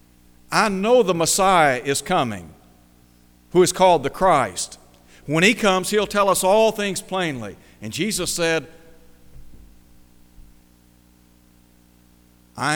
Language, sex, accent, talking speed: English, male, American, 115 wpm